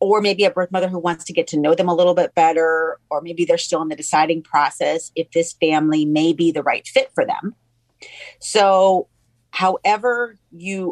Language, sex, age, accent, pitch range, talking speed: English, female, 40-59, American, 160-200 Hz, 205 wpm